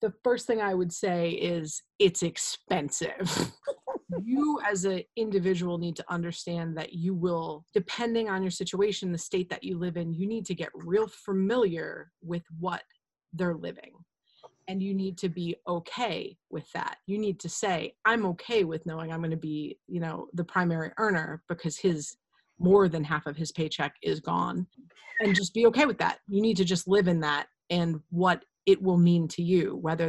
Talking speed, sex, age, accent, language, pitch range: 190 wpm, female, 30-49, American, English, 165-200 Hz